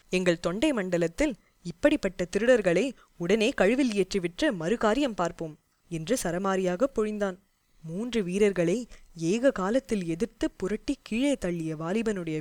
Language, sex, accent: Tamil, female, native